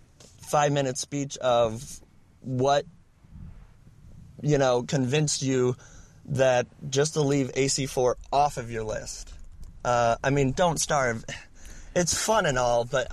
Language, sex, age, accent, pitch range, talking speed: English, male, 30-49, American, 120-150 Hz, 125 wpm